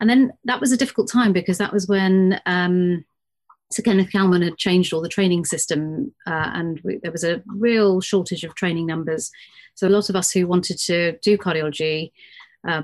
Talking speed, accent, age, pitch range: 195 wpm, British, 30-49, 165-195 Hz